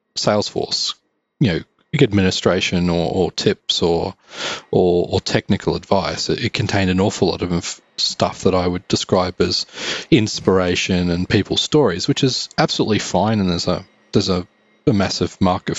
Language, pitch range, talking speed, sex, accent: English, 90-105 Hz, 155 wpm, male, Australian